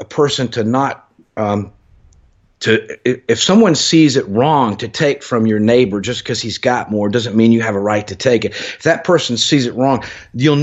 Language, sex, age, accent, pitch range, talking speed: English, male, 50-69, American, 110-130 Hz, 210 wpm